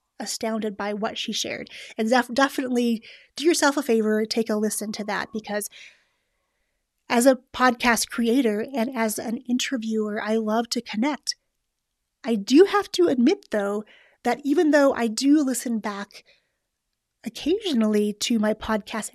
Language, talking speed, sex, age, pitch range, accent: English, 145 wpm, female, 30-49, 225-275 Hz, American